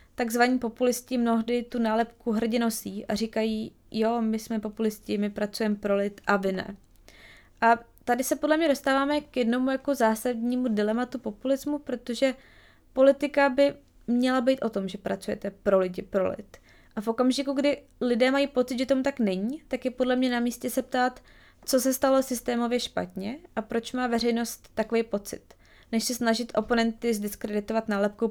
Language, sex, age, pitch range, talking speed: Czech, female, 20-39, 215-255 Hz, 170 wpm